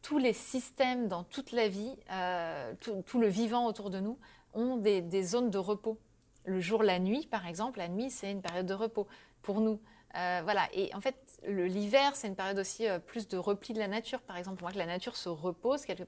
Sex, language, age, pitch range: female, French, 30-49, 185-225 Hz